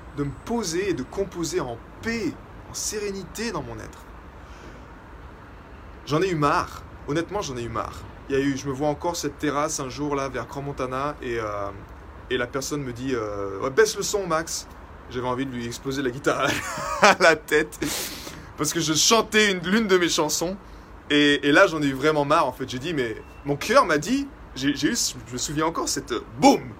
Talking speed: 215 wpm